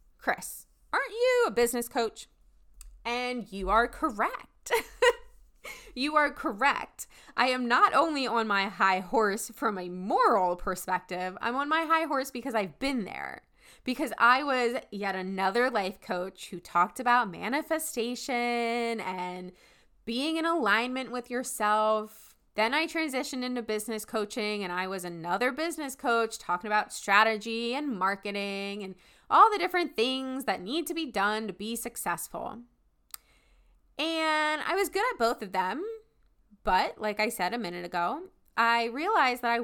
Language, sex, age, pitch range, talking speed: English, female, 20-39, 195-260 Hz, 150 wpm